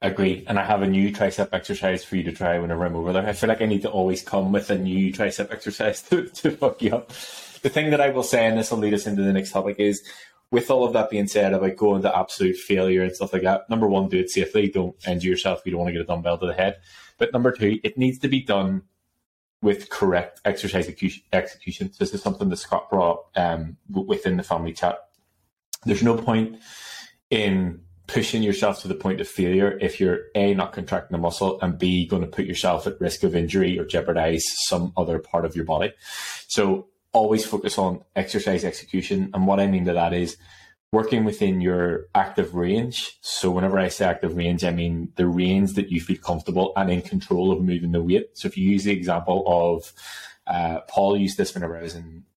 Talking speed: 225 wpm